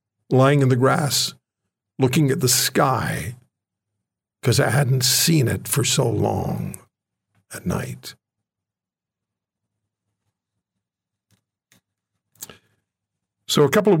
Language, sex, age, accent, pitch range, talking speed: English, male, 60-79, American, 115-150 Hz, 95 wpm